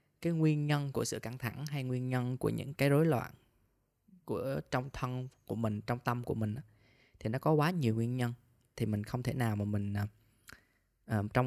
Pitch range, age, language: 110-130 Hz, 20-39, Vietnamese